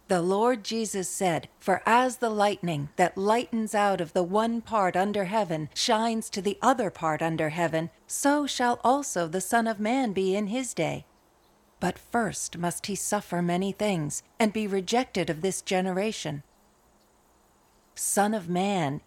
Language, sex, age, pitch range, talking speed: English, female, 40-59, 185-240 Hz, 160 wpm